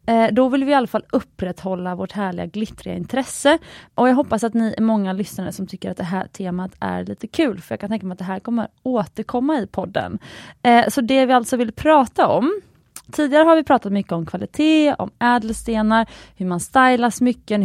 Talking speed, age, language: 205 wpm, 30-49, Swedish